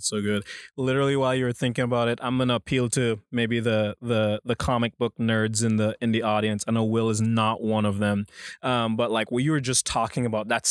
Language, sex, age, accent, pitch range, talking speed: English, male, 20-39, American, 115-140 Hz, 235 wpm